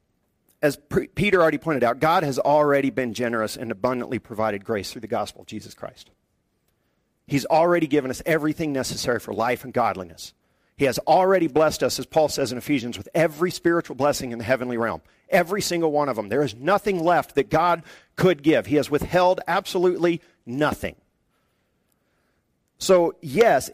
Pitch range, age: 135-180 Hz, 40-59